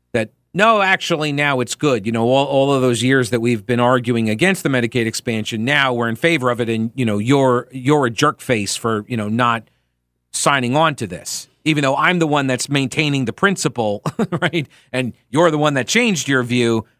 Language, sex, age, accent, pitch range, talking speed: English, male, 40-59, American, 120-160 Hz, 210 wpm